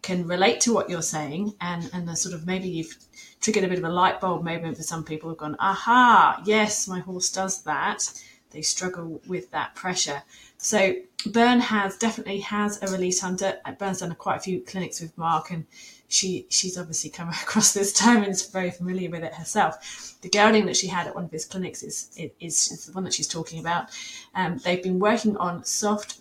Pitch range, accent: 170-210 Hz, British